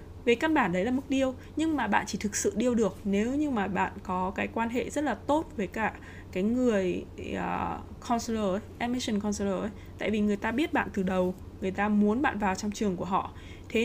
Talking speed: 230 wpm